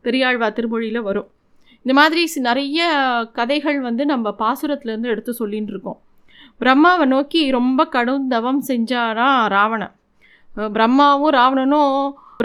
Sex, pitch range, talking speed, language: female, 230-280 Hz, 105 wpm, Tamil